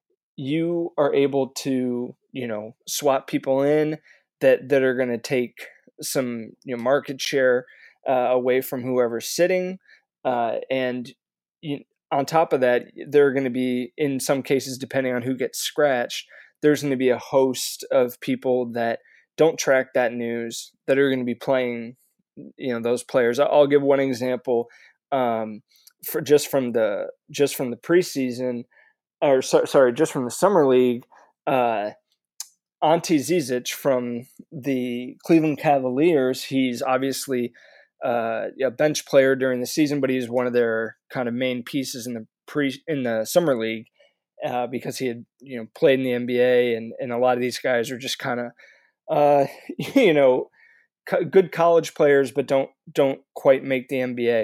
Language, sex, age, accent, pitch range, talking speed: English, male, 20-39, American, 125-145 Hz, 165 wpm